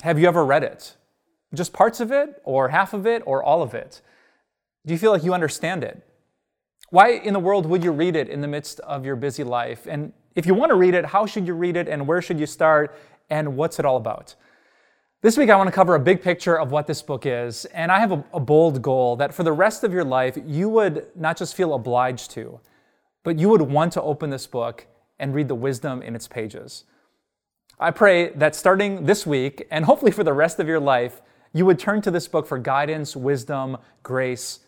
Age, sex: 20-39, male